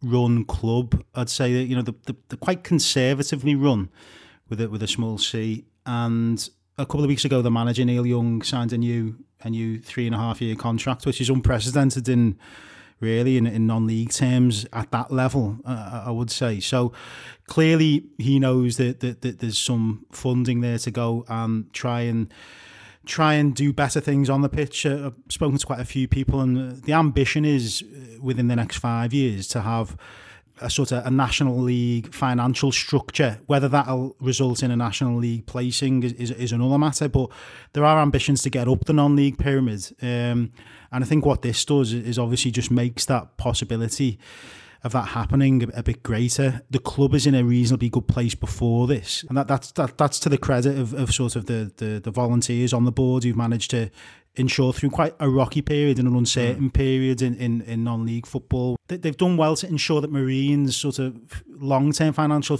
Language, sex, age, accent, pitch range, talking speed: English, male, 30-49, British, 120-140 Hz, 195 wpm